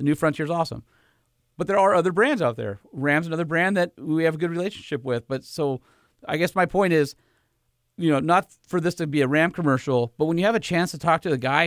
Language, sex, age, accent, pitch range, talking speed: English, male, 40-59, American, 100-155 Hz, 255 wpm